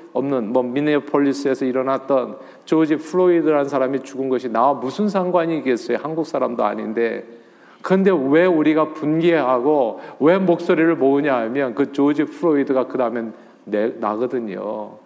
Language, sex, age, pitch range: Korean, male, 40-59, 125-165 Hz